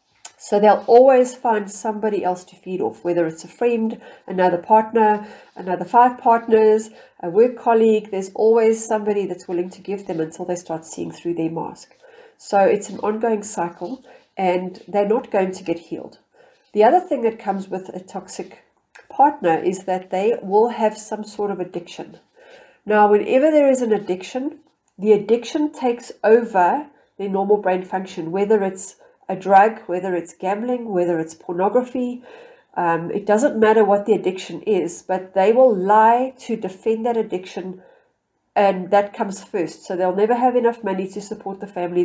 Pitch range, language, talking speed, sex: 185-230 Hz, English, 170 wpm, female